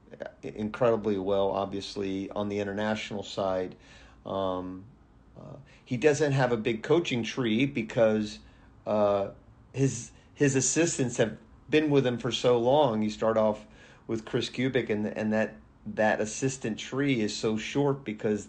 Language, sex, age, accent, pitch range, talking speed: English, male, 50-69, American, 100-115 Hz, 145 wpm